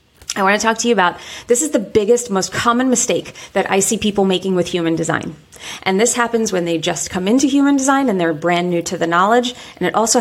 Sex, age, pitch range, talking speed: female, 30-49, 180-230 Hz, 245 wpm